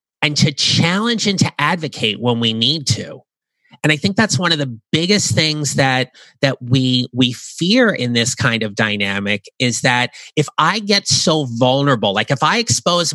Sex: male